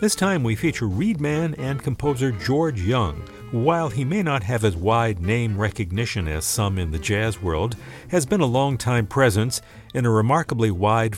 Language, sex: English, male